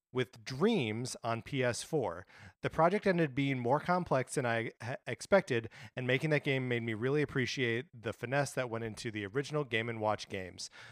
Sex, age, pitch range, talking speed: male, 30-49, 115-145 Hz, 170 wpm